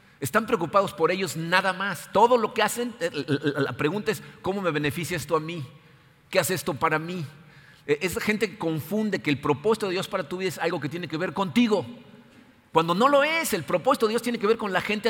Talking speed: 225 wpm